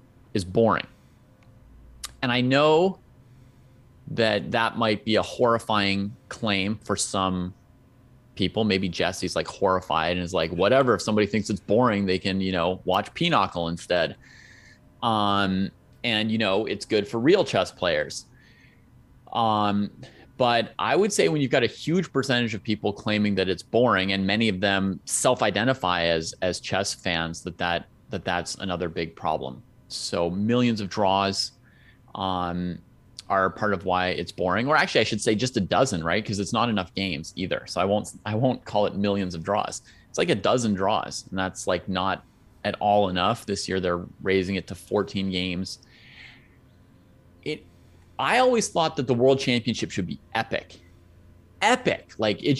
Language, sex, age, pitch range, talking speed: English, male, 30-49, 95-120 Hz, 170 wpm